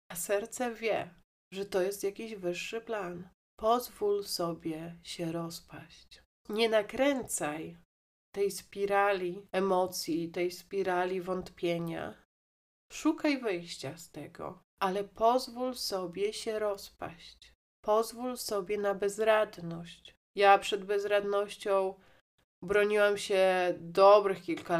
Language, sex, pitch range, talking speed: Polish, female, 165-200 Hz, 100 wpm